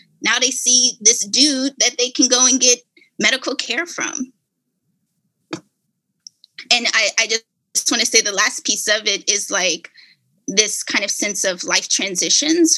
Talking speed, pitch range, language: 160 wpm, 195-255 Hz, English